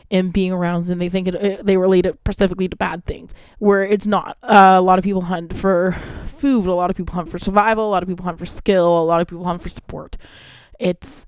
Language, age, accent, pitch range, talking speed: English, 20-39, American, 170-195 Hz, 260 wpm